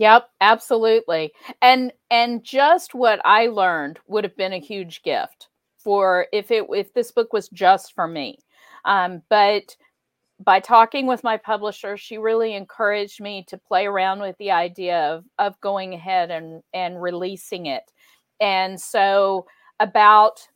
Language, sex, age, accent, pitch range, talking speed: English, female, 50-69, American, 180-225 Hz, 150 wpm